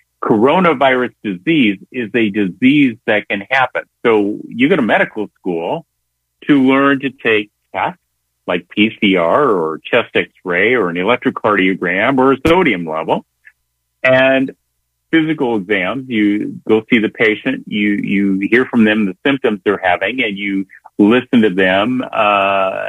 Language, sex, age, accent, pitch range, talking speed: English, male, 50-69, American, 95-125 Hz, 140 wpm